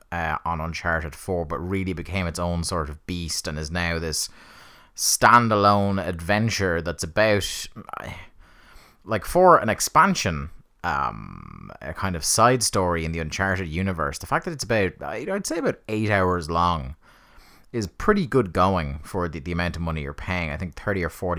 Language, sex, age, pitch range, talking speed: English, male, 30-49, 80-105 Hz, 170 wpm